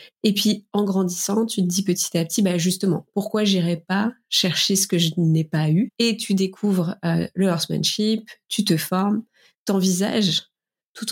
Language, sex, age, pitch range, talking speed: French, female, 20-39, 170-200 Hz, 185 wpm